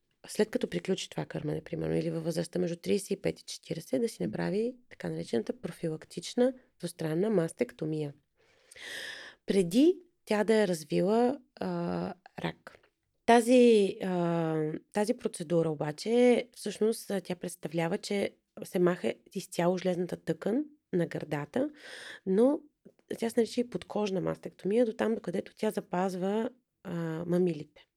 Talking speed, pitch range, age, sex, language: 120 wpm, 170-220 Hz, 30-49, female, Bulgarian